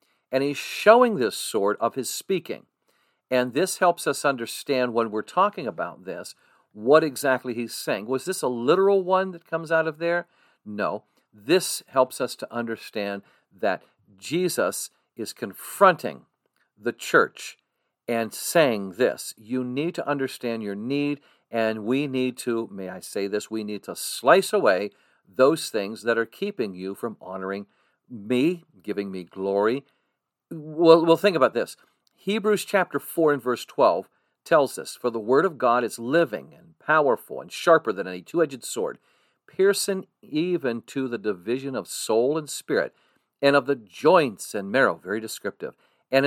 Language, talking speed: English, 160 wpm